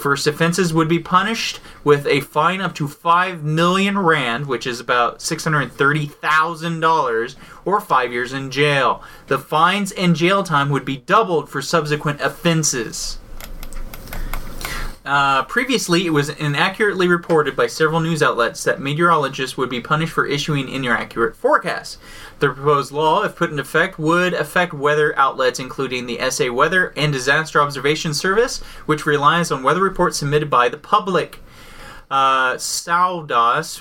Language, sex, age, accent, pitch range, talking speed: English, male, 30-49, American, 140-180 Hz, 155 wpm